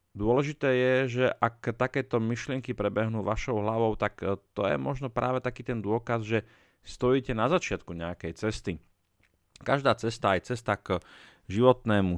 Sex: male